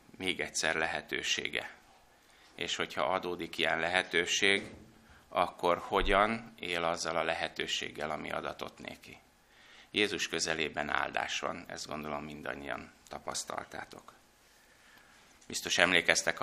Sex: male